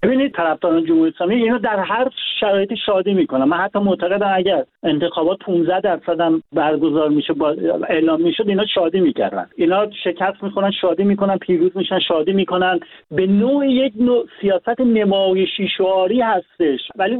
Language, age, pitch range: Persian, 50-69, 185-230 Hz